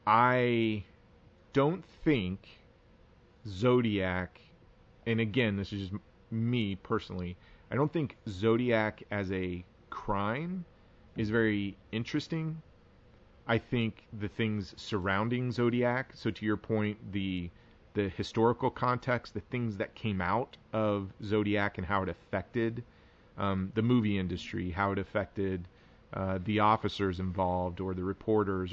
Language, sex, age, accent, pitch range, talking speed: English, male, 30-49, American, 95-115 Hz, 125 wpm